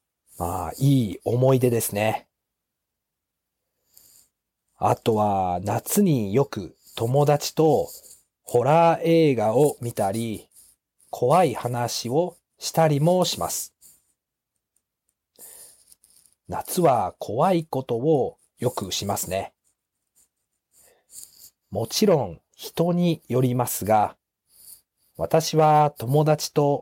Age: 40-59